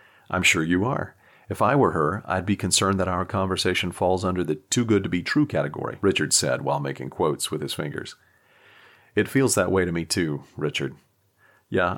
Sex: male